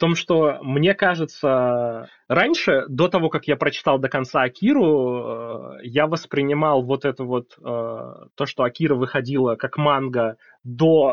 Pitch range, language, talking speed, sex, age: 125-155 Hz, Russian, 140 wpm, male, 20-39